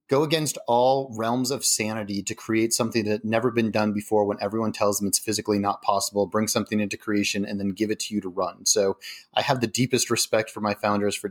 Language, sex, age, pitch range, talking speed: English, male, 30-49, 105-125 Hz, 240 wpm